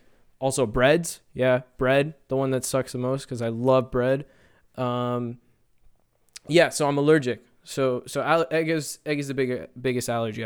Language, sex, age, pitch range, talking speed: English, male, 20-39, 115-140 Hz, 170 wpm